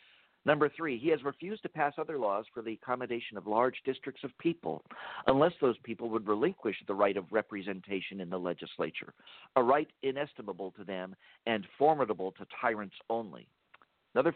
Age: 50-69